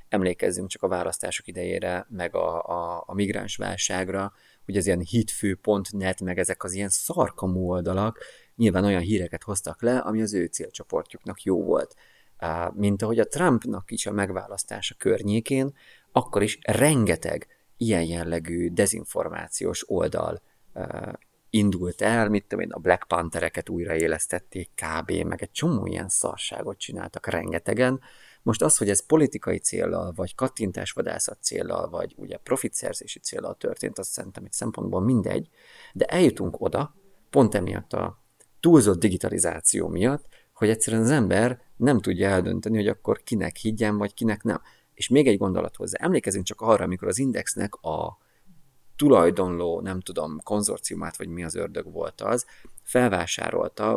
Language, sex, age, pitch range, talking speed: Hungarian, male, 30-49, 95-115 Hz, 145 wpm